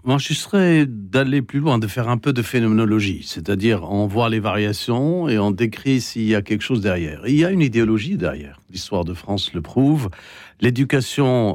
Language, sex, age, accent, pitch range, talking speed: French, male, 60-79, French, 110-150 Hz, 205 wpm